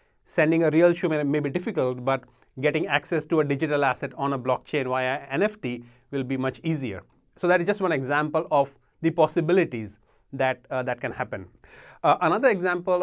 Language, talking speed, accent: English, 190 wpm, Indian